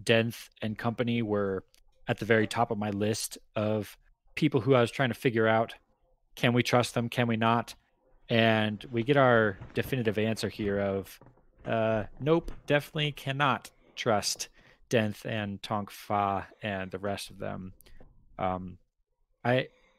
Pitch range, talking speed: 100-125 Hz, 155 wpm